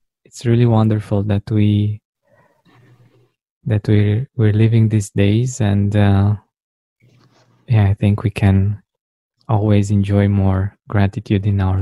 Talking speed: 120 wpm